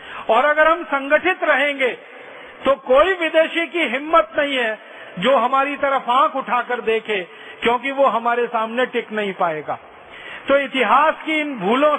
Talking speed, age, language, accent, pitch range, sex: 150 wpm, 40-59, Hindi, native, 235-280 Hz, male